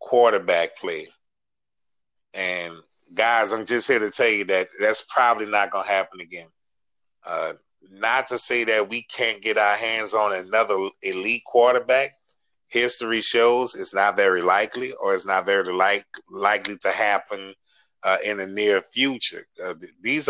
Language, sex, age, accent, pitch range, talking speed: English, male, 30-49, American, 105-135 Hz, 155 wpm